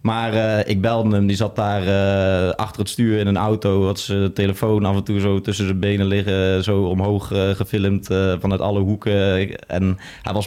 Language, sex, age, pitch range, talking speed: Dutch, male, 20-39, 95-110 Hz, 210 wpm